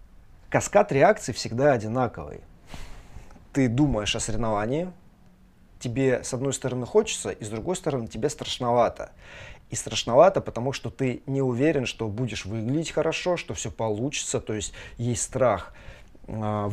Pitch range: 115-140 Hz